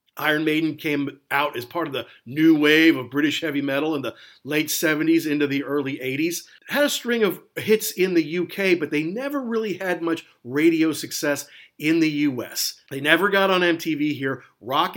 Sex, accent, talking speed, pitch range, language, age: male, American, 195 wpm, 145-205 Hz, English, 50-69